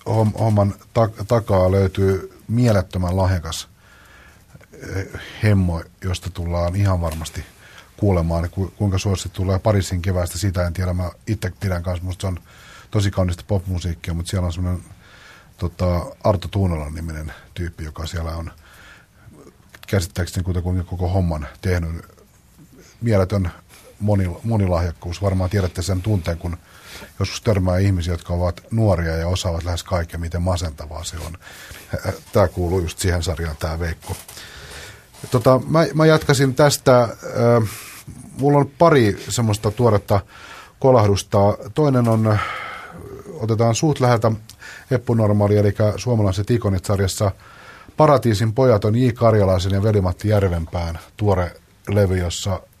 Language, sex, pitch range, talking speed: Finnish, male, 90-110 Hz, 120 wpm